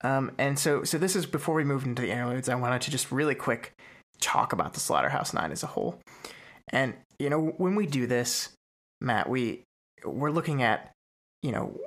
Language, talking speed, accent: English, 200 wpm, American